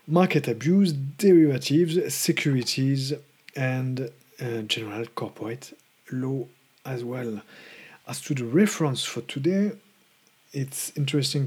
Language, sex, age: English, male, 40-59